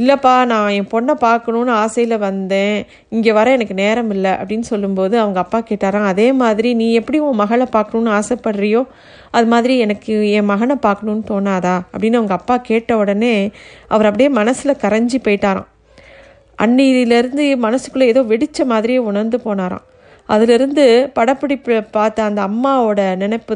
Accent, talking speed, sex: native, 140 wpm, female